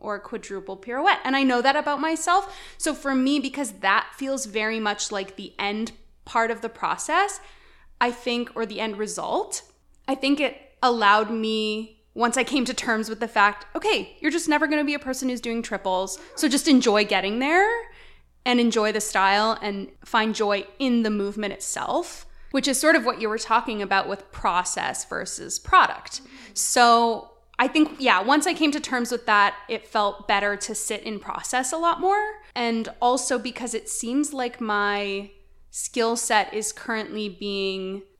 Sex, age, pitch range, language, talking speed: female, 20-39, 205-275 Hz, English, 185 wpm